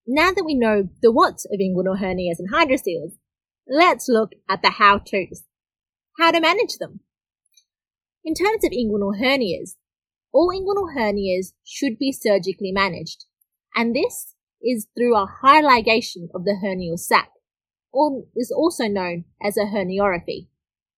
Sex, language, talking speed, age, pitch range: female, English, 145 wpm, 30-49, 195-305 Hz